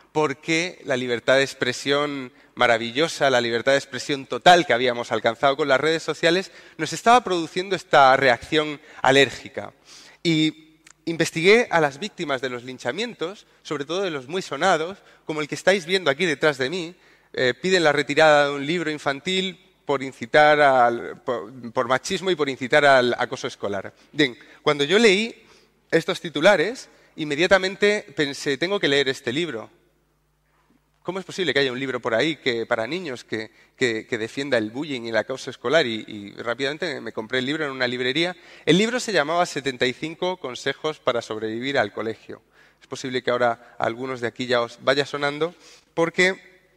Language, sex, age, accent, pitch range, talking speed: Spanish, male, 30-49, Spanish, 130-170 Hz, 170 wpm